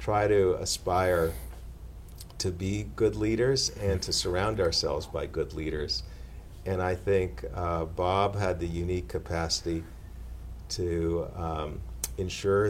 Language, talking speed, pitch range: English, 125 wpm, 80-95 Hz